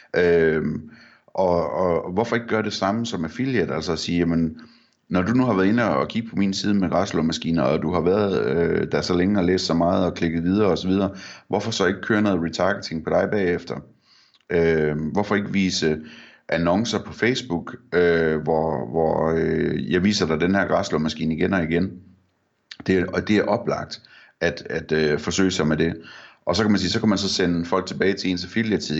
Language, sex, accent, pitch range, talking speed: Danish, male, native, 80-95 Hz, 210 wpm